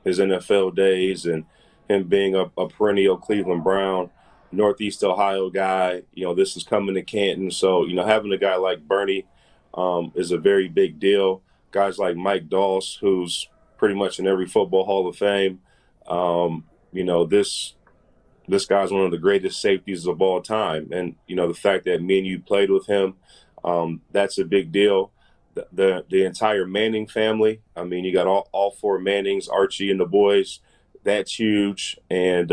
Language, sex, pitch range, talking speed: English, male, 95-105 Hz, 185 wpm